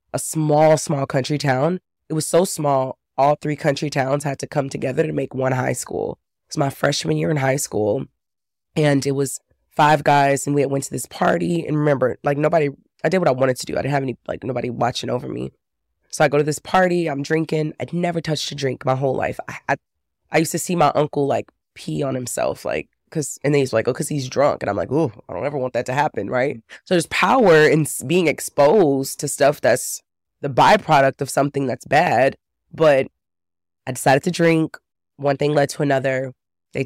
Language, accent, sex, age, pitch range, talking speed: English, American, female, 20-39, 130-155 Hz, 225 wpm